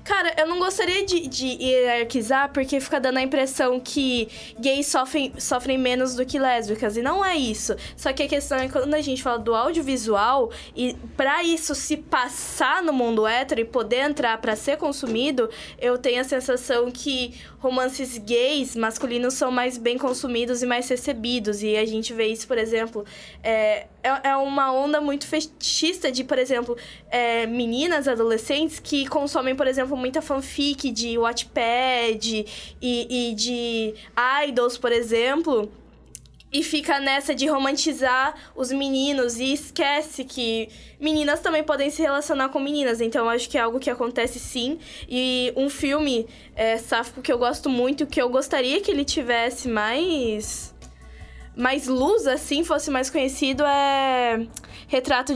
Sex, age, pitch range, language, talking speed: female, 10-29, 240-285 Hz, English, 160 wpm